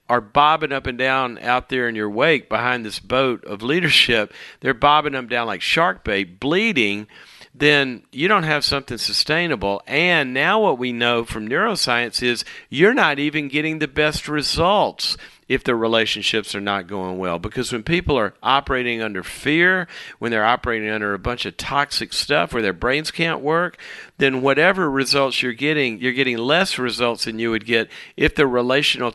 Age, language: 50-69, English